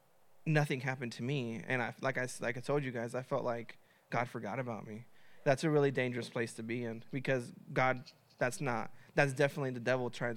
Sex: male